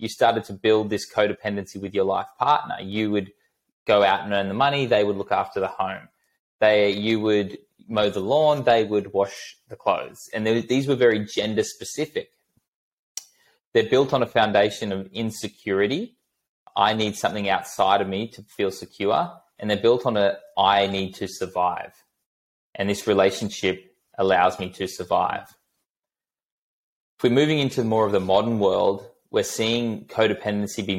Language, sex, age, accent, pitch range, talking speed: English, male, 20-39, Australian, 95-115 Hz, 165 wpm